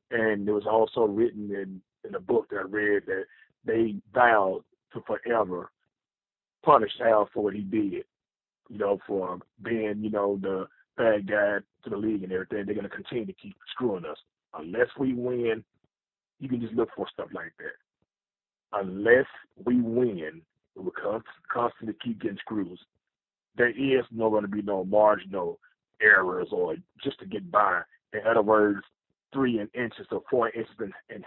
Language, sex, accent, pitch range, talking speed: English, male, American, 105-130 Hz, 175 wpm